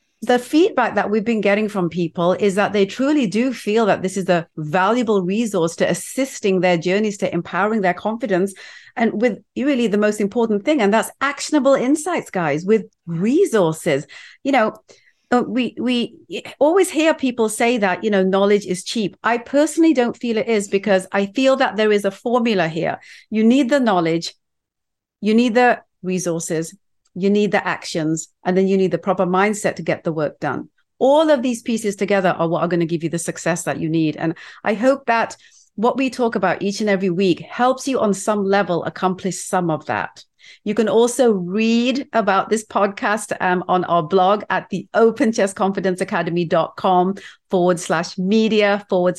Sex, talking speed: female, 185 wpm